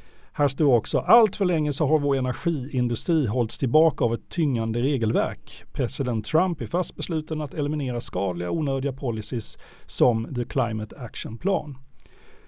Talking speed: 155 wpm